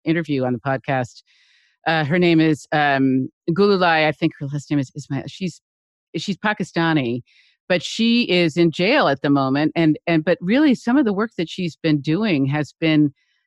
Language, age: English, 50-69